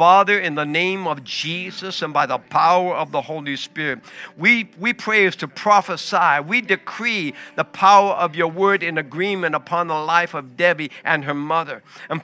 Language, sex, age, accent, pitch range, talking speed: English, male, 60-79, American, 165-205 Hz, 185 wpm